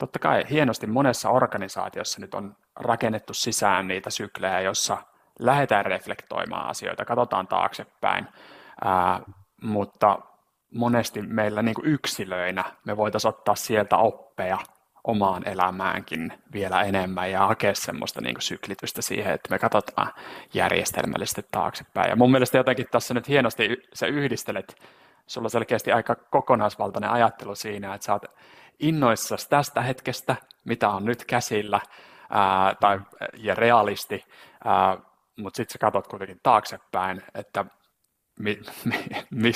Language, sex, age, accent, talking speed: Finnish, male, 30-49, native, 125 wpm